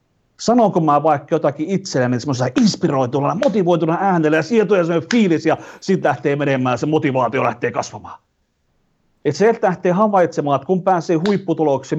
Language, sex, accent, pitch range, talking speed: Finnish, male, native, 145-190 Hz, 145 wpm